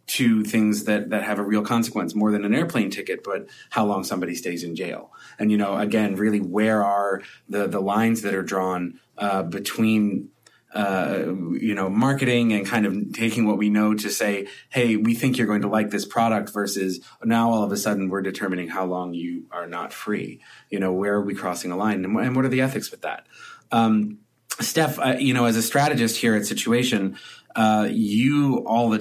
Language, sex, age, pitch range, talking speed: English, male, 30-49, 105-115 Hz, 210 wpm